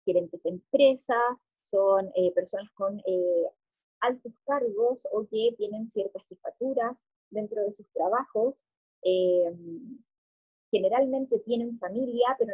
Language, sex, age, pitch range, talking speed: Spanish, female, 20-39, 195-250 Hz, 115 wpm